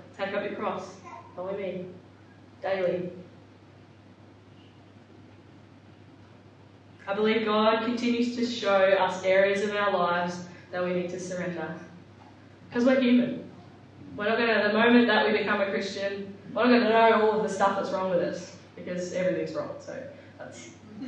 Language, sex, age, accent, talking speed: English, female, 10-29, Australian, 160 wpm